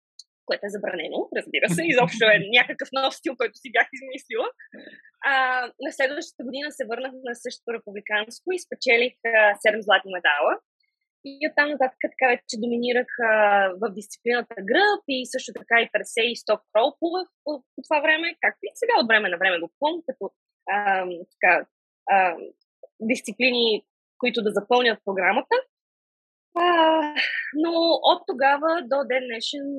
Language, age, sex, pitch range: Bulgarian, 20-39, female, 210-275 Hz